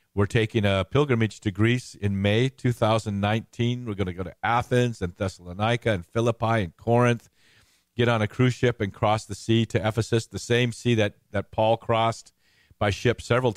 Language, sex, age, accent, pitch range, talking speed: English, male, 50-69, American, 95-115 Hz, 185 wpm